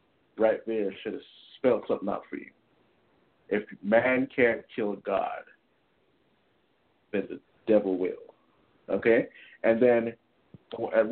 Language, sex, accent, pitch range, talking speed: English, male, American, 100-150 Hz, 120 wpm